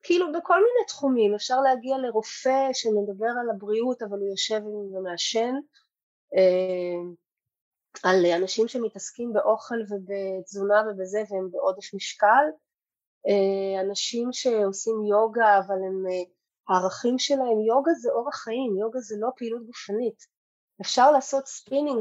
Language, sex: Hebrew, female